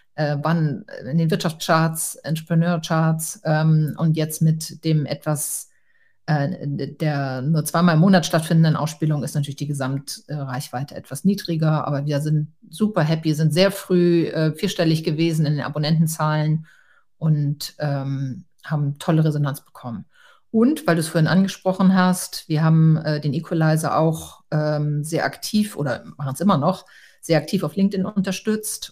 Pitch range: 155-180 Hz